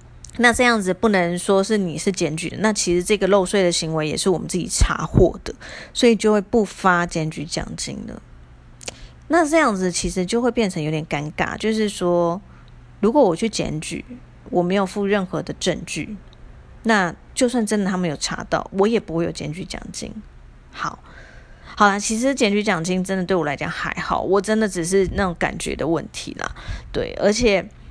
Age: 30-49